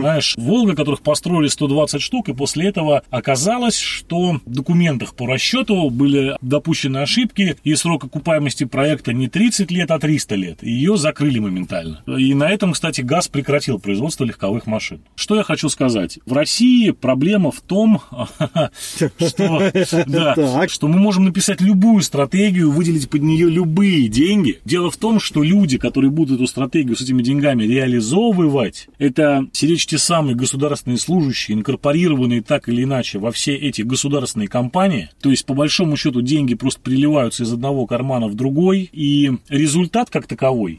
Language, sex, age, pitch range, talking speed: Russian, male, 30-49, 130-170 Hz, 155 wpm